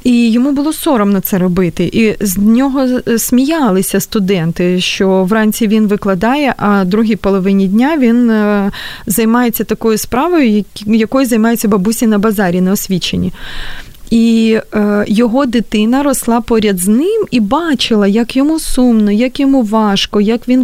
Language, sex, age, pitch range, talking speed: Ukrainian, female, 20-39, 210-250 Hz, 140 wpm